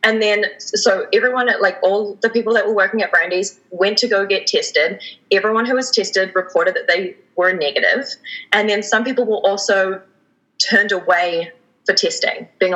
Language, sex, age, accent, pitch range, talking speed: English, female, 20-39, Australian, 185-240 Hz, 185 wpm